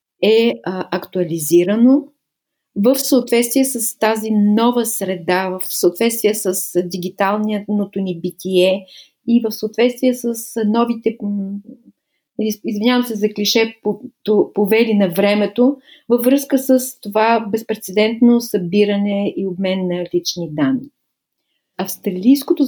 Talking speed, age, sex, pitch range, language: 100 wpm, 30-49, female, 190-240 Hz, Bulgarian